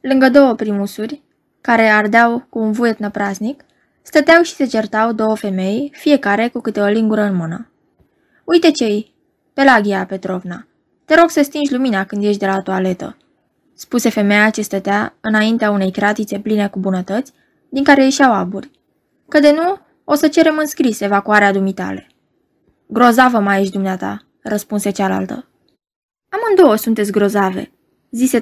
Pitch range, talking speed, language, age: 205-285 Hz, 150 wpm, Romanian, 20-39